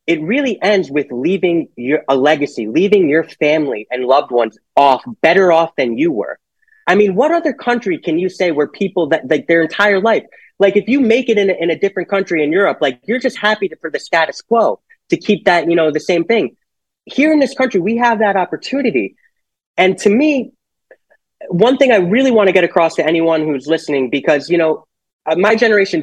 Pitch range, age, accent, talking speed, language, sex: 155-235 Hz, 20-39, American, 215 wpm, English, male